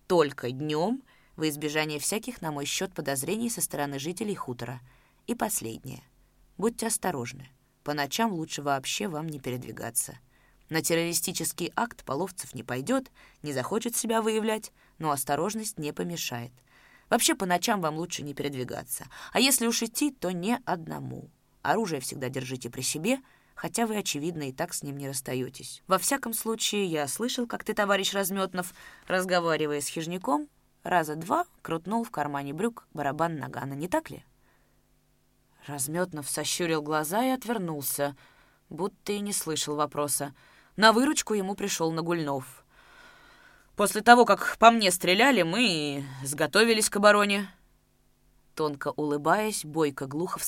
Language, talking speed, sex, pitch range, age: Russian, 140 wpm, female, 145-210 Hz, 20-39